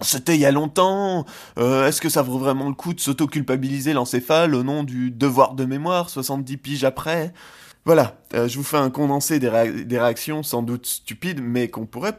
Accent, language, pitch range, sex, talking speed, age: French, French, 120-145 Hz, male, 205 wpm, 20-39